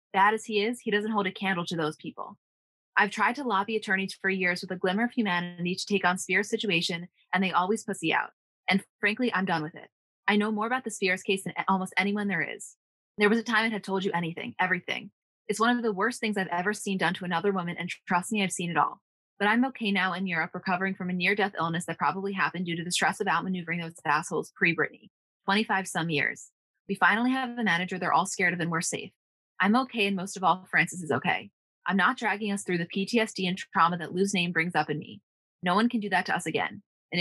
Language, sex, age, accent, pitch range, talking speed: English, female, 20-39, American, 175-205 Hz, 250 wpm